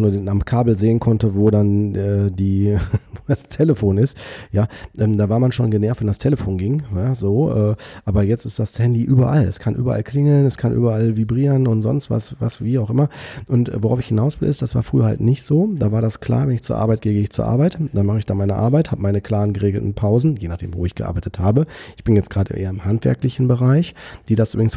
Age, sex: 40-59, male